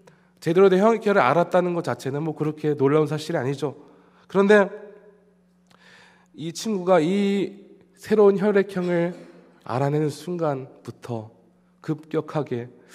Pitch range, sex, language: 150-205 Hz, male, Korean